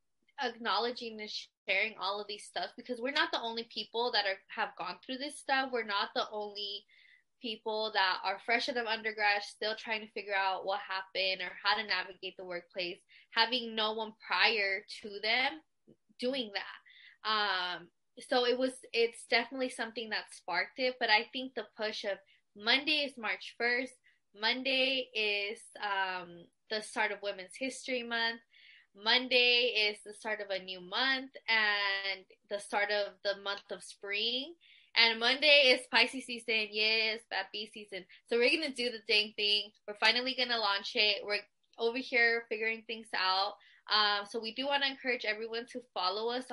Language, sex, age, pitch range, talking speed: English, female, 20-39, 200-245 Hz, 175 wpm